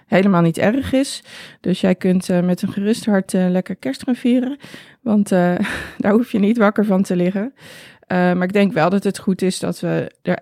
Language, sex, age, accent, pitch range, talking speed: Dutch, female, 20-39, Dutch, 180-220 Hz, 225 wpm